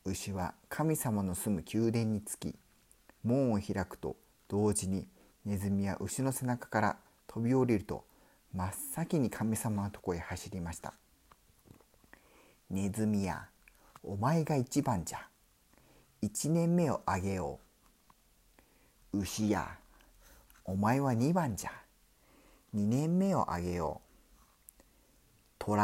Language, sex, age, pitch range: Spanish, male, 50-69, 90-130 Hz